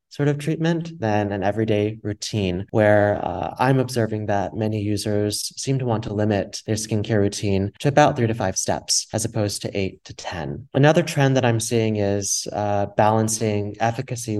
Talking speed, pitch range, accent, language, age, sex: 180 wpm, 100-115 Hz, American, English, 30-49, male